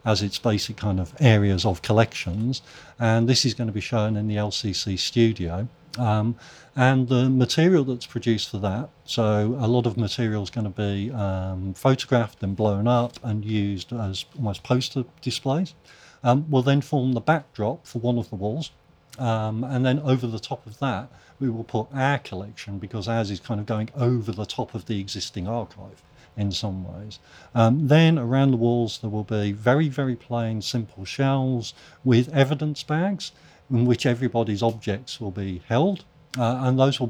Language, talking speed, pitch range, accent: English, 185 wpm, 105-130 Hz, British